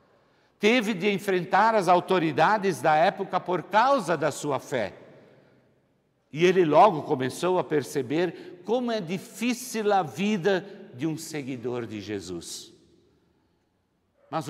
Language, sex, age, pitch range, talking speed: Portuguese, male, 60-79, 120-195 Hz, 120 wpm